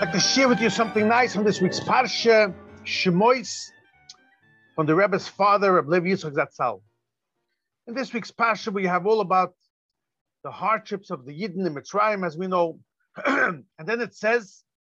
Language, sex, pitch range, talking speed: English, male, 160-235 Hz, 170 wpm